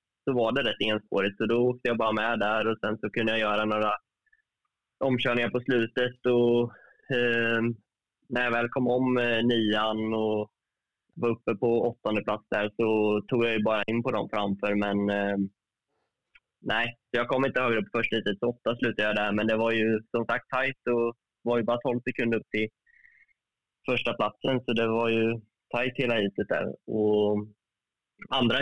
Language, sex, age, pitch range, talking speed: Swedish, male, 20-39, 110-125 Hz, 190 wpm